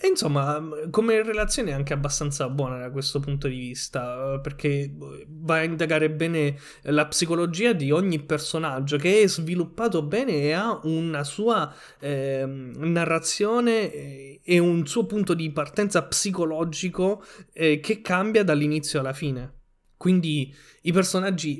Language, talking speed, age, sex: Italian, 135 wpm, 20-39, male